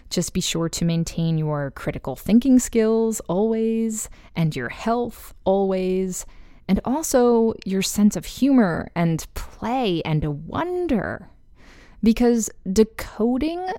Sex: female